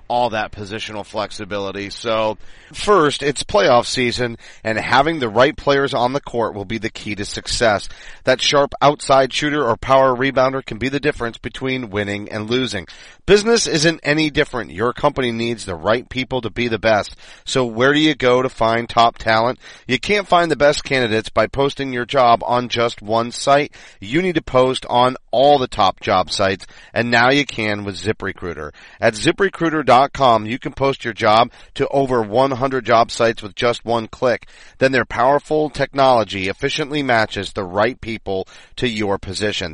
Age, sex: 40-59, male